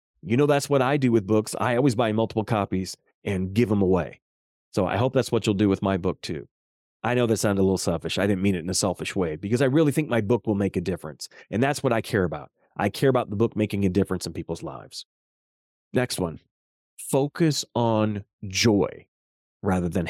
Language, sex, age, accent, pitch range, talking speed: English, male, 30-49, American, 95-125 Hz, 230 wpm